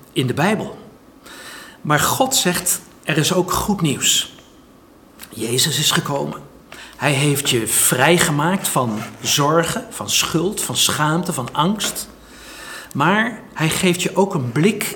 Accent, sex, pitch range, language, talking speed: Dutch, male, 130-185 Hz, Dutch, 130 wpm